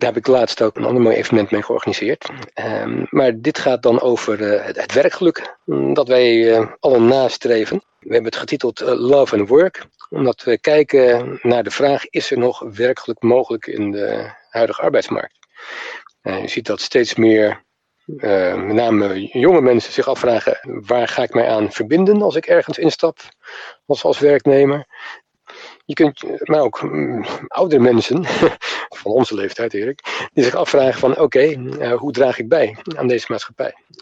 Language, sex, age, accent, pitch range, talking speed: Dutch, male, 50-69, Dutch, 115-160 Hz, 170 wpm